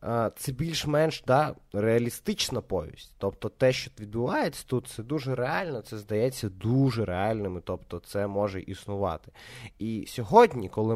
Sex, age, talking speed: male, 20-39, 130 wpm